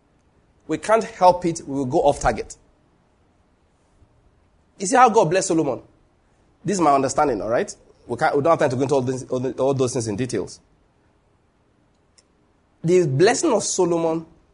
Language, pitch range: English, 130-190 Hz